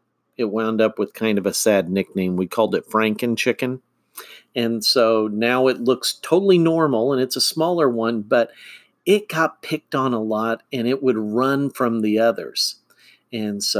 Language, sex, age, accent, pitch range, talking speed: English, male, 50-69, American, 120-160 Hz, 185 wpm